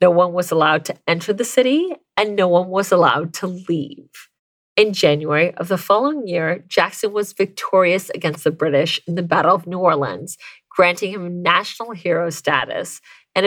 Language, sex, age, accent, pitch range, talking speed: English, female, 40-59, American, 165-210 Hz, 175 wpm